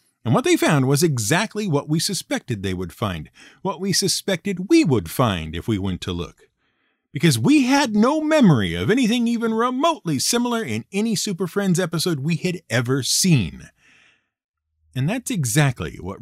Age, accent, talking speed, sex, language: 50-69, American, 170 wpm, male, English